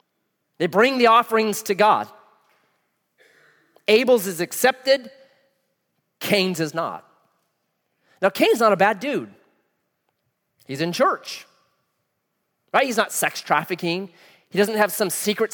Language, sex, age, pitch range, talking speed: English, male, 30-49, 160-220 Hz, 120 wpm